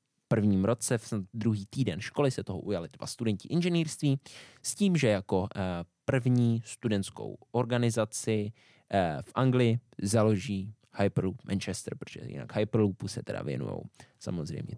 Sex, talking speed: male, 135 wpm